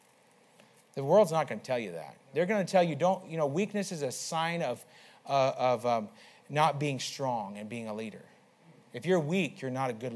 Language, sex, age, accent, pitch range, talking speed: English, male, 40-59, American, 145-195 Hz, 225 wpm